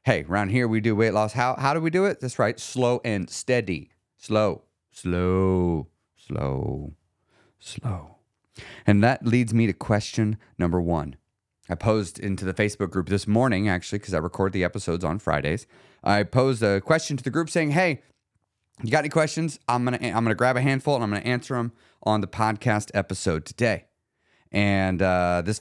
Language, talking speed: English, 185 wpm